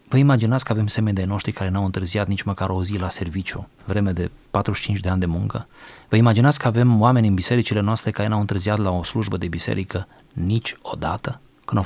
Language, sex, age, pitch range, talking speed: Romanian, male, 30-49, 95-120 Hz, 215 wpm